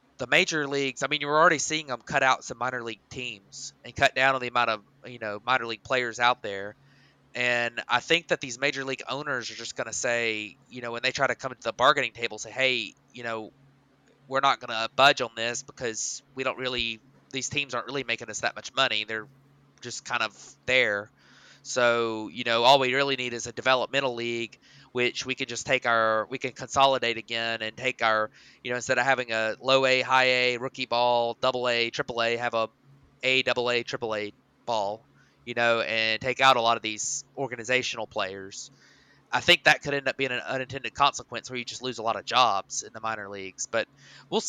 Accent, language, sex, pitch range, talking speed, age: American, English, male, 115-135 Hz, 225 wpm, 20-39